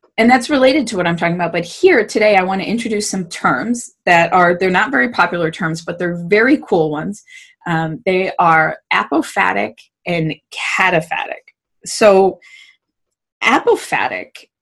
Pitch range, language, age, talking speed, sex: 170-235 Hz, English, 20-39, 150 wpm, female